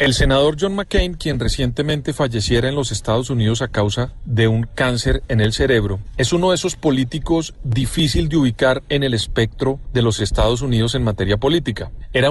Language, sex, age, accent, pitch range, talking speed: Spanish, male, 40-59, Colombian, 110-145 Hz, 185 wpm